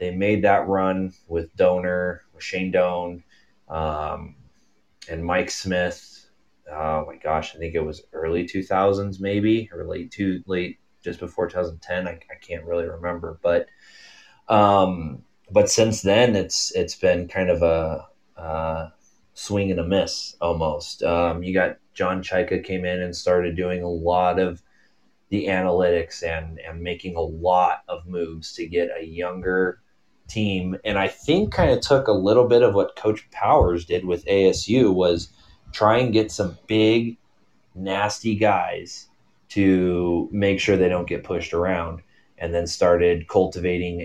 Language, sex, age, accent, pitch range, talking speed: English, male, 30-49, American, 85-100 Hz, 160 wpm